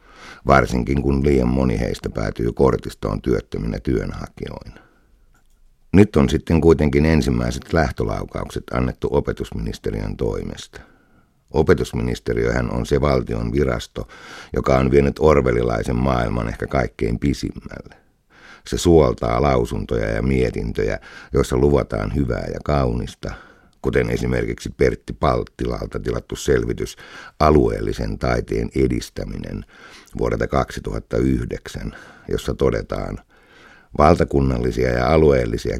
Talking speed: 95 wpm